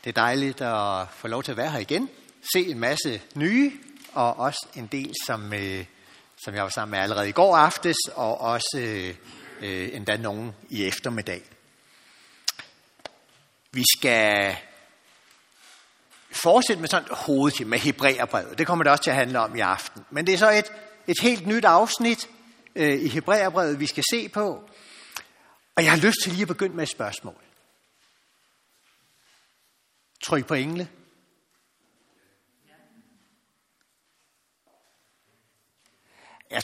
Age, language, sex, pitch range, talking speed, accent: 60-79, Danish, male, 115-185 Hz, 135 wpm, native